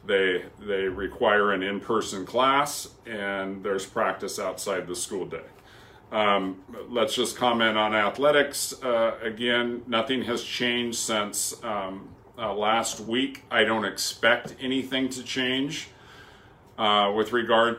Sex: male